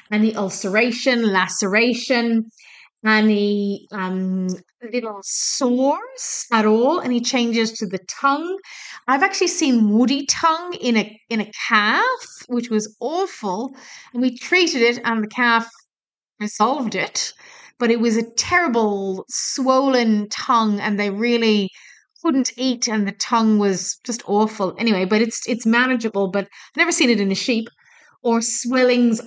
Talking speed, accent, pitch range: 140 wpm, British, 200-245 Hz